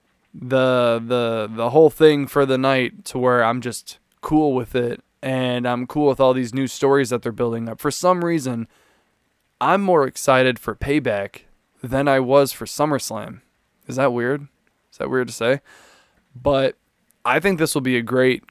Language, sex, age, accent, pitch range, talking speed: English, male, 20-39, American, 120-145 Hz, 180 wpm